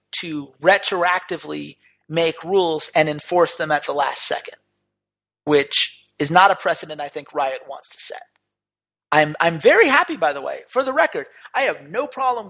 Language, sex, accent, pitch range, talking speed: English, male, American, 150-200 Hz, 175 wpm